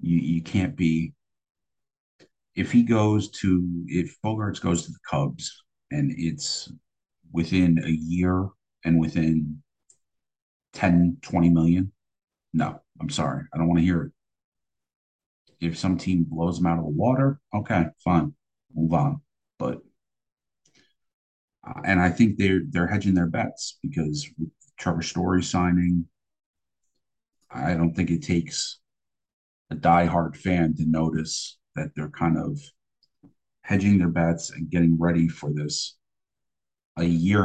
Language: English